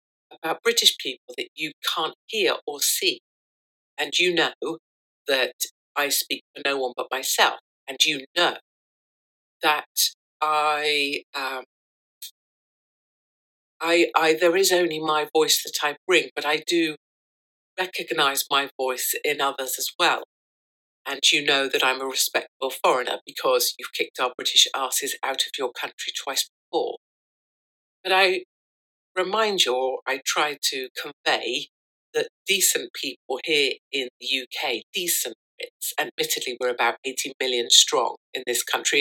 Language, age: English, 50-69